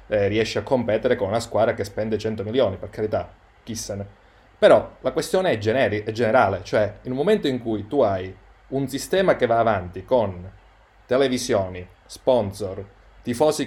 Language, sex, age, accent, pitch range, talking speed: Italian, male, 30-49, native, 105-165 Hz, 165 wpm